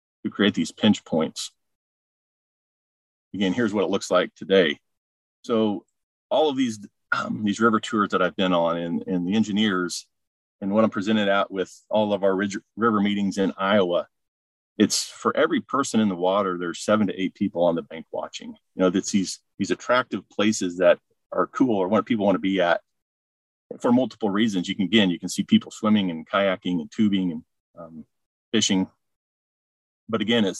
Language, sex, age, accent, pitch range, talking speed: English, male, 40-59, American, 85-105 Hz, 185 wpm